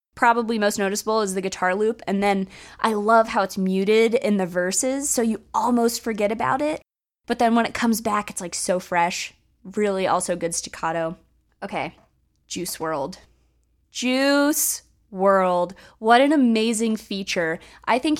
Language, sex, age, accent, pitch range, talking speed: English, female, 20-39, American, 185-235 Hz, 160 wpm